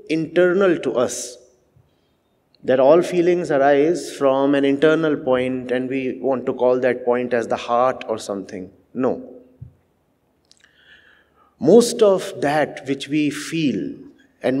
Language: English